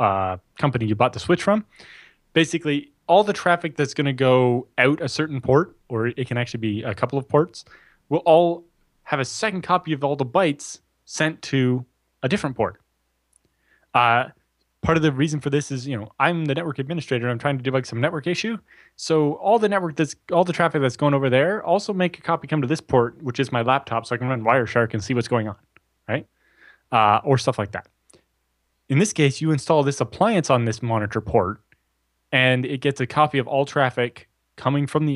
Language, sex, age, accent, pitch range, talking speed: English, male, 20-39, American, 115-150 Hz, 220 wpm